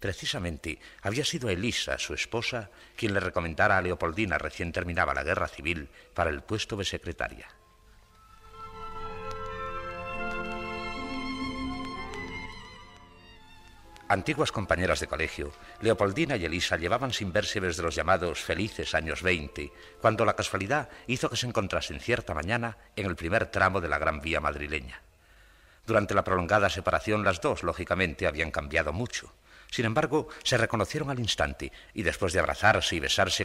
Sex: male